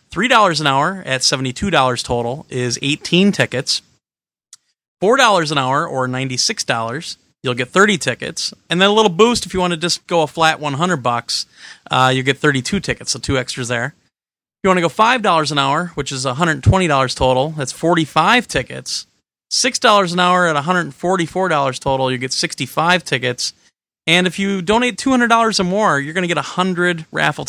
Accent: American